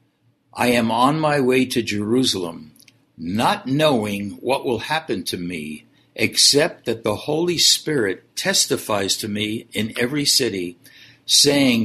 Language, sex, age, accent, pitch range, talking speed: English, male, 60-79, American, 105-135 Hz, 130 wpm